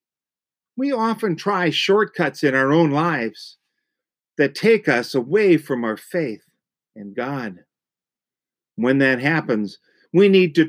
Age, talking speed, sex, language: 50-69, 130 wpm, male, English